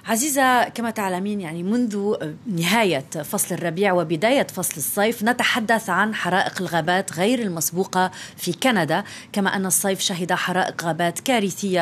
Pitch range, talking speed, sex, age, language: 175-230 Hz, 130 wpm, female, 30-49, Arabic